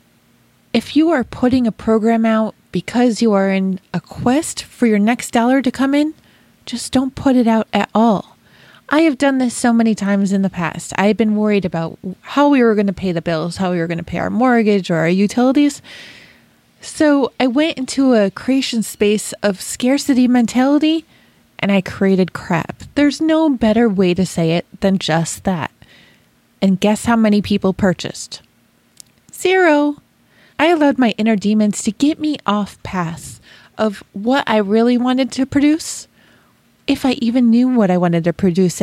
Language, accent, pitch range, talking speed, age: English, American, 200-265 Hz, 180 wpm, 20-39